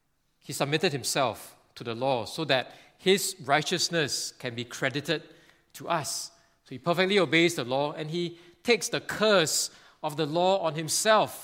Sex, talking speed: male, 165 wpm